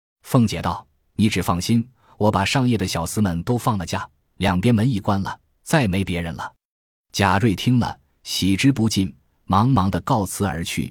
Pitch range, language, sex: 90-115 Hz, Chinese, male